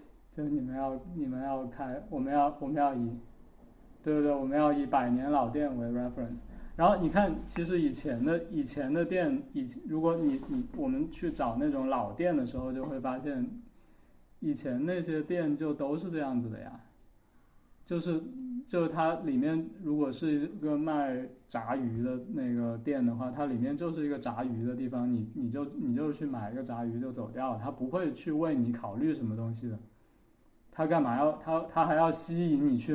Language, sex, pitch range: Chinese, male, 120-165 Hz